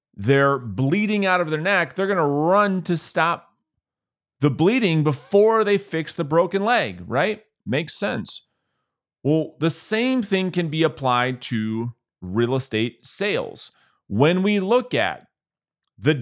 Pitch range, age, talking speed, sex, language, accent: 130-180 Hz, 40-59, 145 wpm, male, English, American